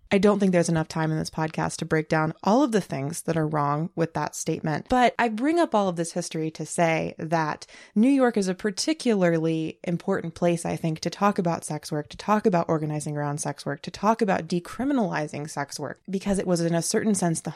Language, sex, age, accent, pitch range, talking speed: English, female, 20-39, American, 160-200 Hz, 230 wpm